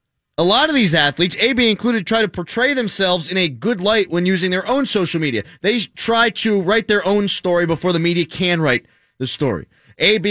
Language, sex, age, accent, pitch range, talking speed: English, male, 20-39, American, 160-205 Hz, 210 wpm